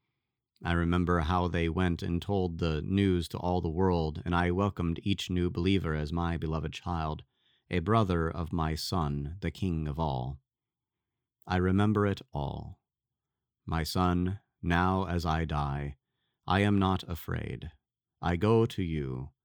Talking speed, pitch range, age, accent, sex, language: 155 wpm, 80-95 Hz, 30-49, American, male, English